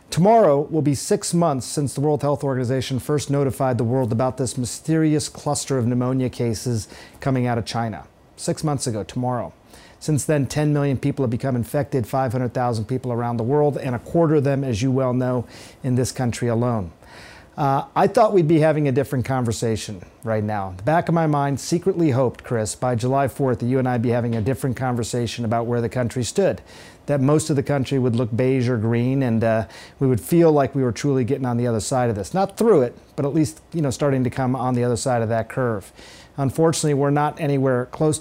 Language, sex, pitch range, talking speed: English, male, 120-145 Hz, 220 wpm